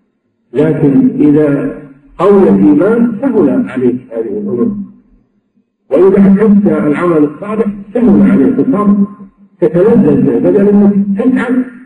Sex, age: male, 50-69